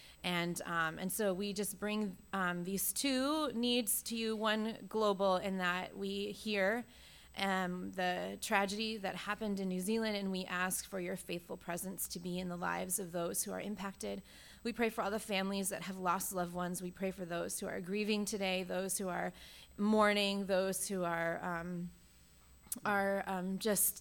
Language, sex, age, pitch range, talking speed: English, female, 20-39, 175-205 Hz, 185 wpm